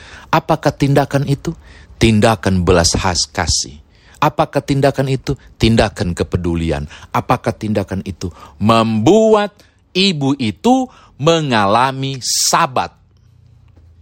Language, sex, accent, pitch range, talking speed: Indonesian, male, native, 90-135 Hz, 85 wpm